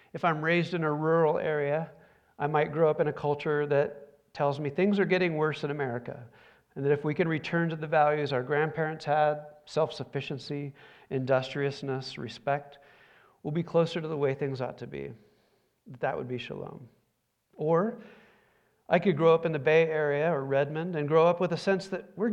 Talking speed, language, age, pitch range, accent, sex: 190 wpm, English, 40-59, 140-165 Hz, American, male